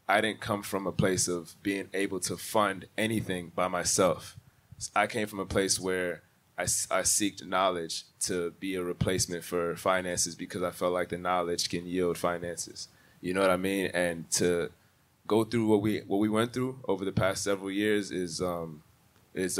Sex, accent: male, American